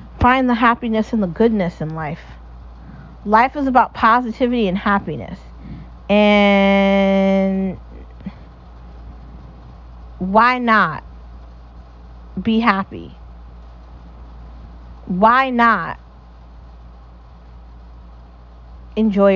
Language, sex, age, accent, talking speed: English, female, 30-49, American, 70 wpm